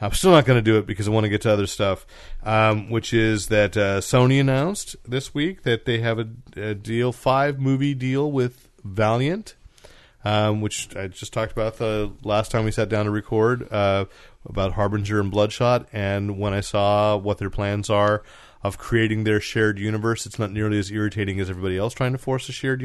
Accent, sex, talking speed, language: American, male, 205 wpm, English